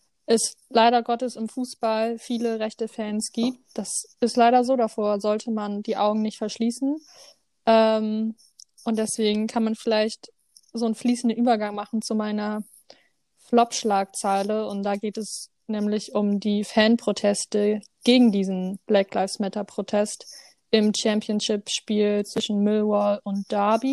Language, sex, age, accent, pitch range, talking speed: German, female, 20-39, German, 205-230 Hz, 140 wpm